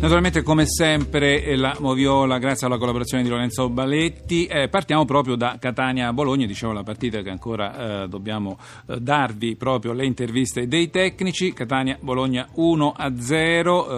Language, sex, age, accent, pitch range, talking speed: Italian, male, 40-59, native, 125-155 Hz, 140 wpm